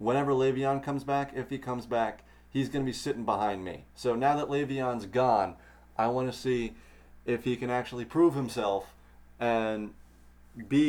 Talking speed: 165 wpm